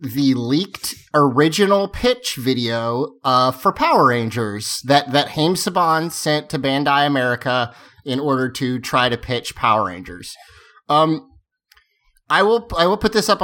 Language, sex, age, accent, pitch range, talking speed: English, male, 30-49, American, 130-185 Hz, 145 wpm